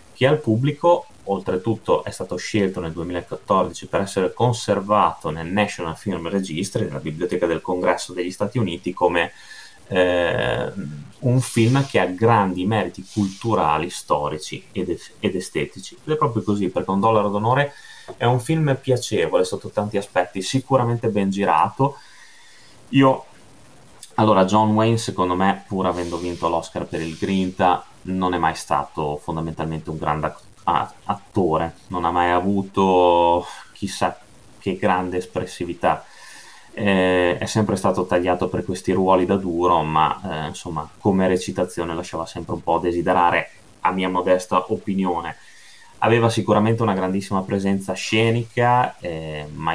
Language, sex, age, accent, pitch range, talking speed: Italian, male, 30-49, native, 85-110 Hz, 140 wpm